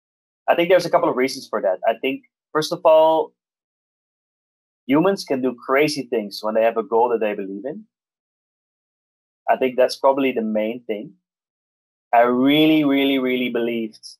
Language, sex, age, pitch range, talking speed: English, male, 20-39, 100-135 Hz, 170 wpm